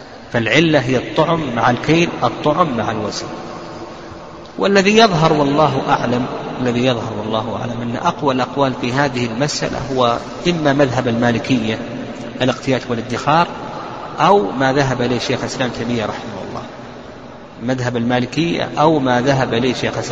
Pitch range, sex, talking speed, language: 130-160 Hz, male, 130 wpm, Arabic